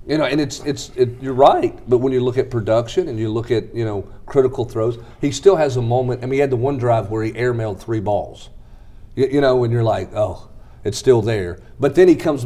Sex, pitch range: male, 110-130 Hz